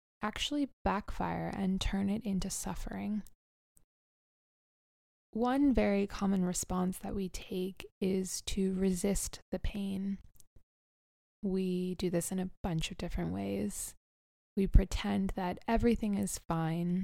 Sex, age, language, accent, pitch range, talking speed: female, 20-39, English, American, 175-195 Hz, 120 wpm